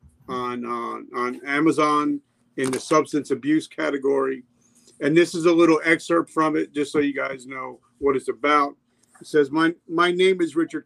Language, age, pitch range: English, 50-69, 125-160 Hz